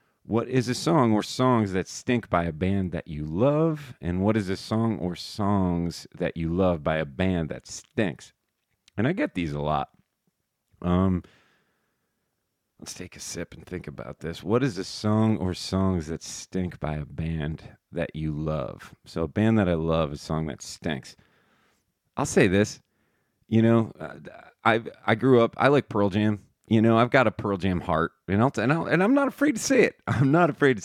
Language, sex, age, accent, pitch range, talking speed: English, male, 40-59, American, 85-115 Hz, 200 wpm